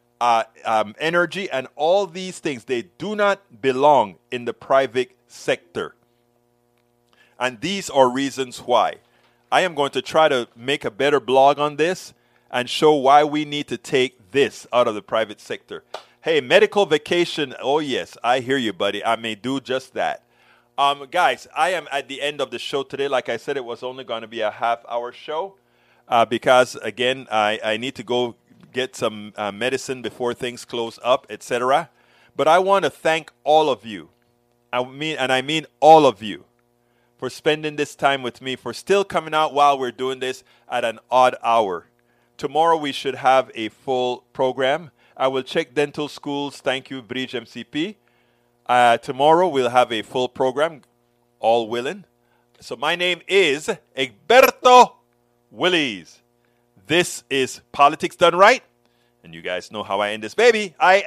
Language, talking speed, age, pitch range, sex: English, 175 wpm, 30-49, 120-150 Hz, male